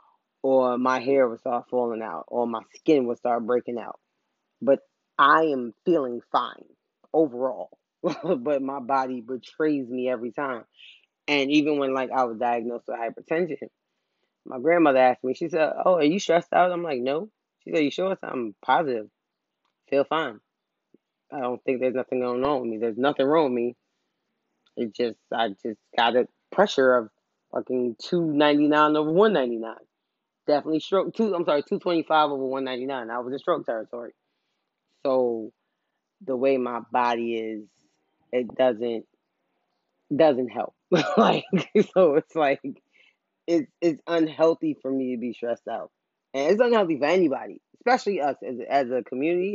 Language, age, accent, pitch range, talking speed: English, 20-39, American, 120-155 Hz, 165 wpm